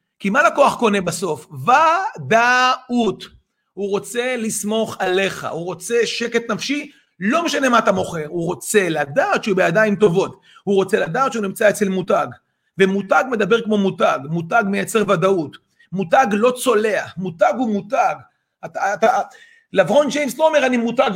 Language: Hebrew